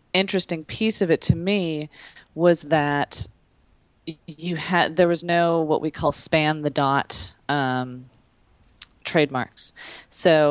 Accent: American